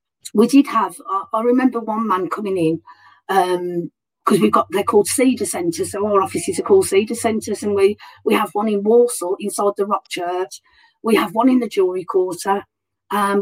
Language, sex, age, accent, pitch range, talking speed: English, female, 40-59, British, 195-255 Hz, 190 wpm